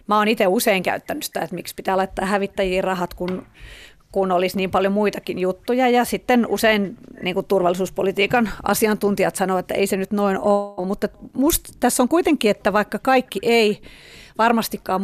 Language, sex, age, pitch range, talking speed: Finnish, female, 30-49, 185-225 Hz, 165 wpm